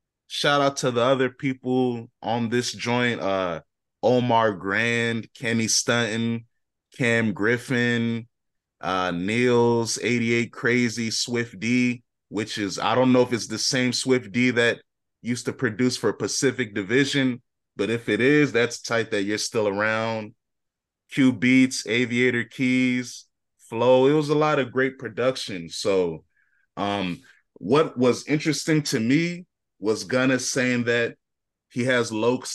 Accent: American